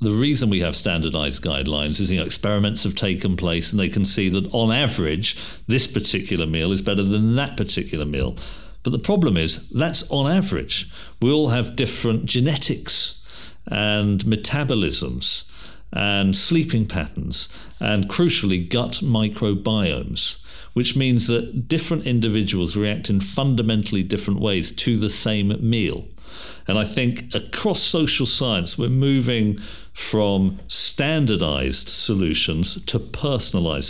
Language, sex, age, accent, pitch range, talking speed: English, male, 50-69, British, 95-125 Hz, 135 wpm